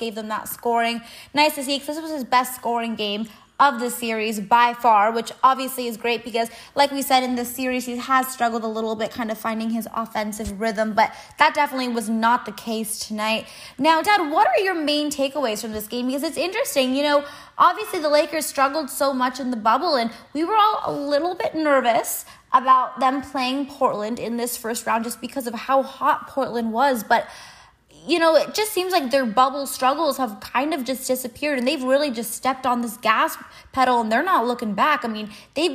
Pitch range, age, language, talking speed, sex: 230-280 Hz, 20-39, English, 215 wpm, female